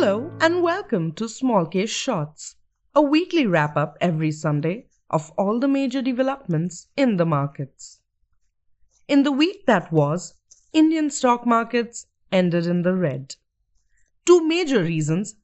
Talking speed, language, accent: 135 wpm, English, Indian